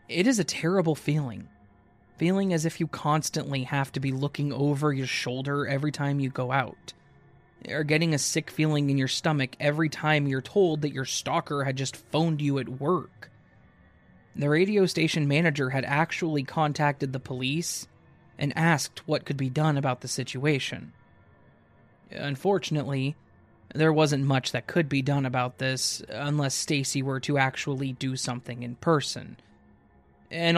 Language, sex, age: English, male, 20-39